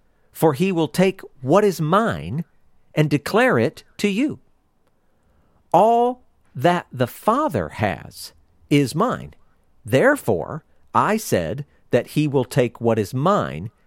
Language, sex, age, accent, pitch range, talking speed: English, male, 50-69, American, 115-185 Hz, 125 wpm